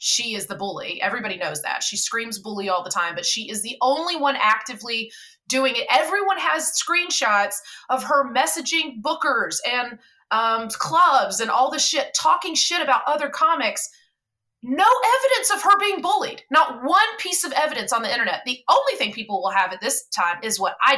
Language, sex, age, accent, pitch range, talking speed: English, female, 30-49, American, 230-325 Hz, 190 wpm